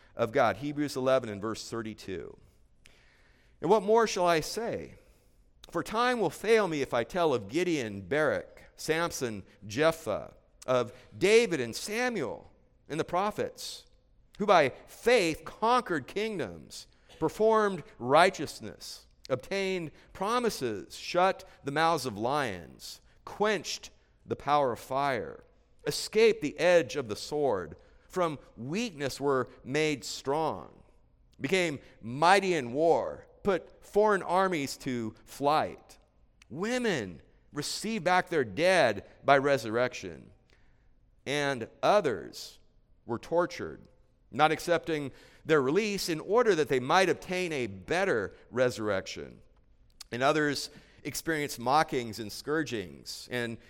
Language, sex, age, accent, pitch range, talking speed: English, male, 50-69, American, 120-185 Hz, 115 wpm